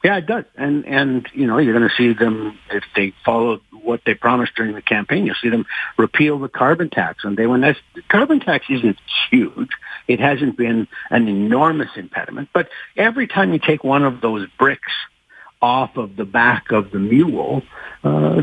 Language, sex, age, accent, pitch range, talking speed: English, male, 60-79, American, 115-150 Hz, 195 wpm